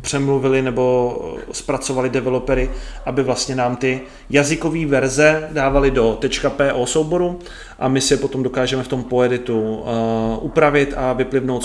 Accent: native